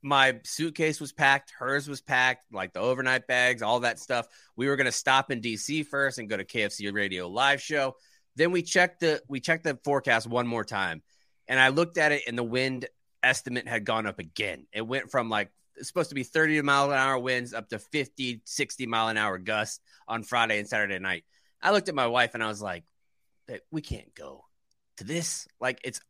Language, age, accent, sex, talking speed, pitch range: English, 20-39, American, male, 220 wpm, 115-140 Hz